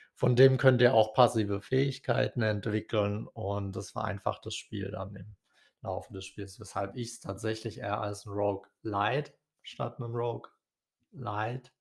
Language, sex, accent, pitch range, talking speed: German, male, German, 105-125 Hz, 150 wpm